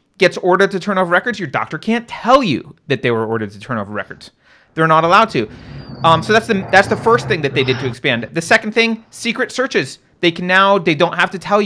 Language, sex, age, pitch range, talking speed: English, male, 30-49, 135-185 Hz, 250 wpm